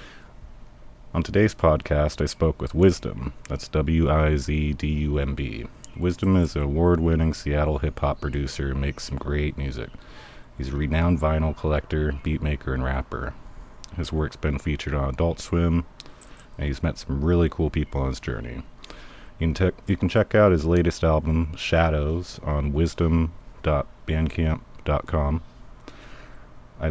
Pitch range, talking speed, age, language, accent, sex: 70-85 Hz, 130 wpm, 30-49, English, American, male